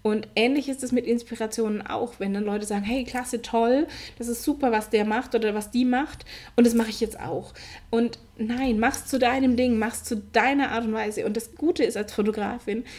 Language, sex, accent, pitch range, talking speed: German, female, German, 210-245 Hz, 225 wpm